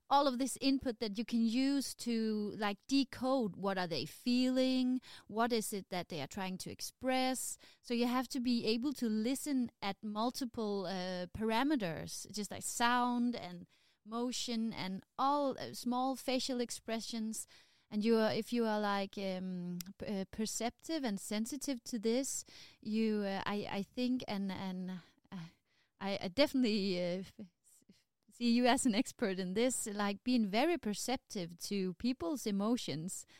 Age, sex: 20-39, female